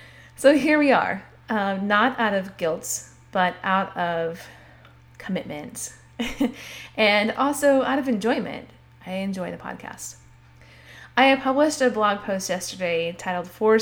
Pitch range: 160-225 Hz